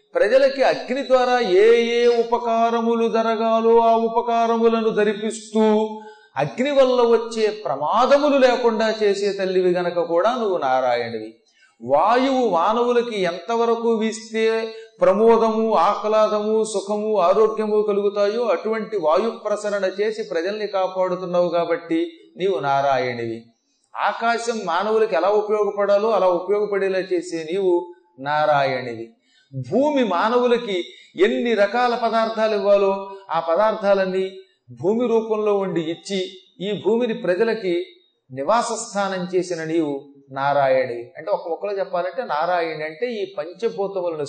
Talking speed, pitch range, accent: 100 wpm, 175-230 Hz, native